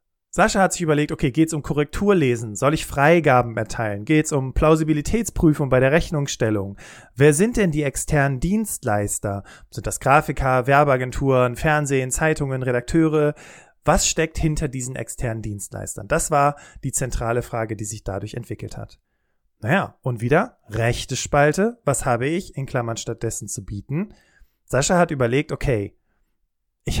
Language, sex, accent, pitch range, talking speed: German, male, German, 120-150 Hz, 150 wpm